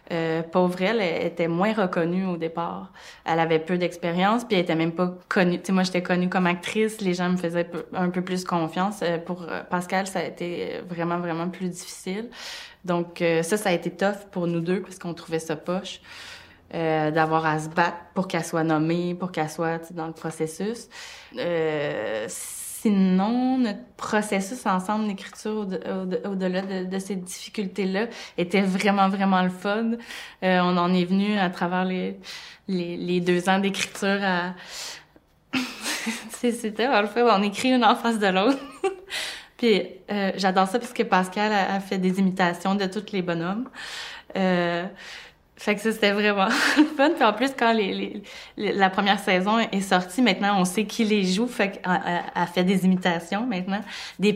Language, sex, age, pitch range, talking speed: French, female, 20-39, 175-205 Hz, 180 wpm